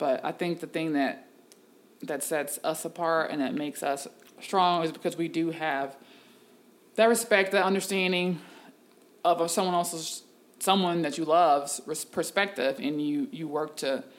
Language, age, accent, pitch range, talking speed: English, 20-39, American, 150-180 Hz, 155 wpm